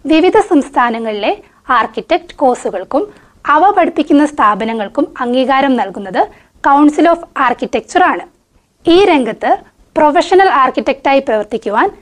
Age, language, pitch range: 20-39, Malayalam, 245-340 Hz